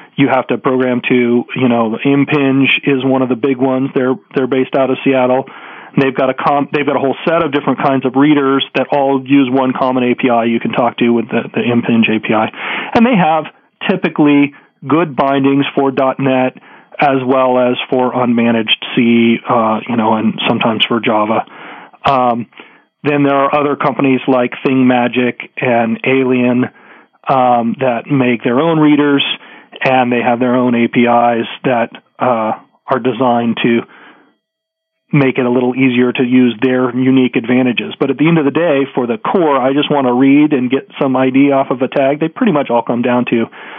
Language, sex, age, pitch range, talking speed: English, male, 40-59, 125-145 Hz, 190 wpm